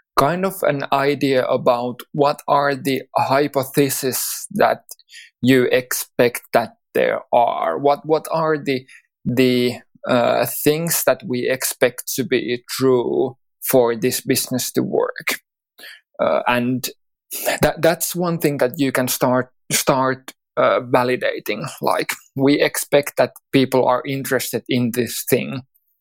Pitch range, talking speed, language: 125-140 Hz, 130 wpm, English